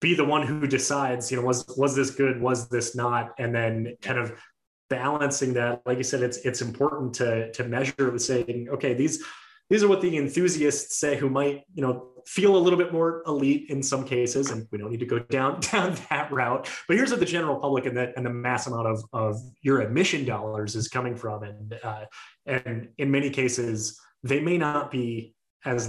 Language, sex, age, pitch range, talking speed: English, male, 20-39, 115-140 Hz, 215 wpm